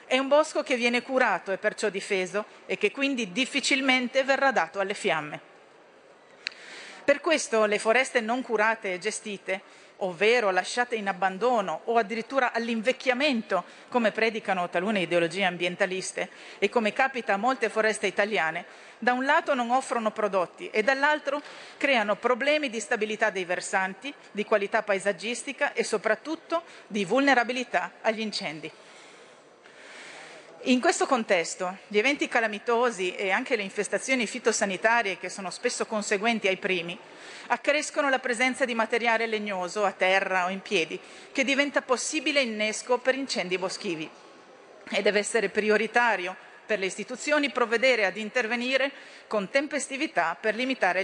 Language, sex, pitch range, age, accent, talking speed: Italian, female, 195-260 Hz, 40-59, native, 135 wpm